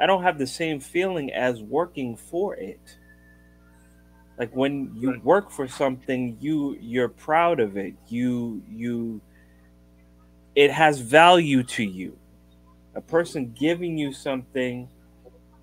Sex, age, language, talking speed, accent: male, 30-49, English, 125 wpm, American